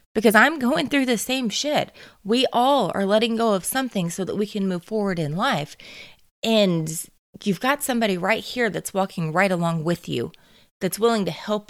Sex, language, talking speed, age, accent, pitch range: female, English, 195 wpm, 20-39, American, 170-220 Hz